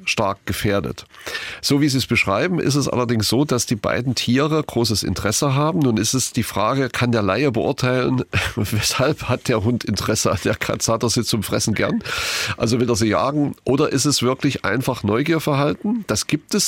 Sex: male